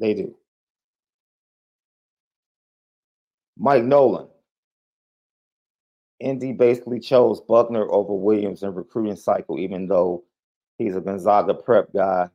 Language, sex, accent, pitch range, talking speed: English, male, American, 105-130 Hz, 95 wpm